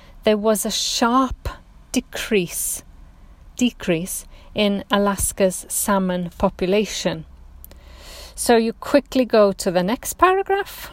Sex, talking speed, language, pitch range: female, 100 wpm, English, 180-220 Hz